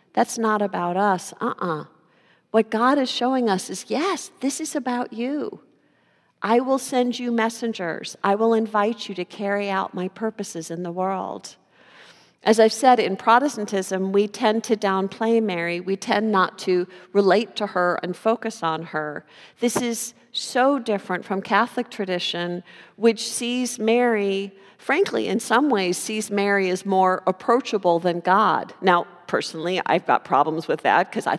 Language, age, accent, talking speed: English, 50-69, American, 165 wpm